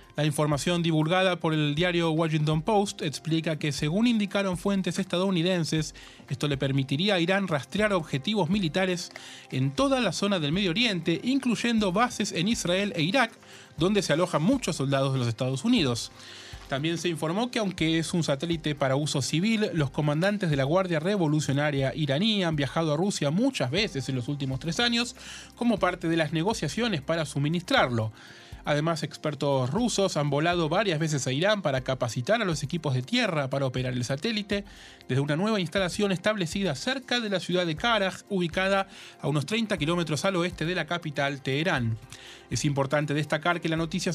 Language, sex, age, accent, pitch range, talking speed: Spanish, male, 30-49, Argentinian, 145-195 Hz, 175 wpm